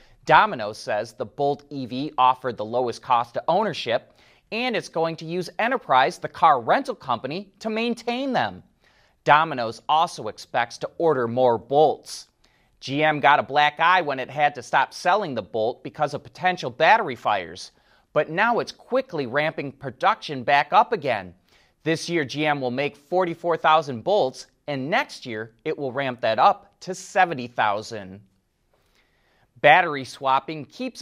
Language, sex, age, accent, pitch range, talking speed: English, male, 30-49, American, 125-185 Hz, 150 wpm